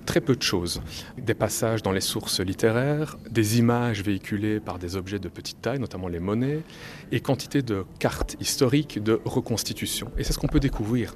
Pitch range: 100-130 Hz